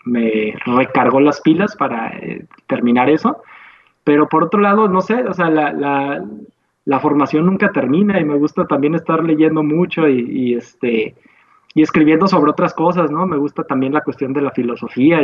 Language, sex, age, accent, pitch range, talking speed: Spanish, male, 20-39, Mexican, 130-165 Hz, 180 wpm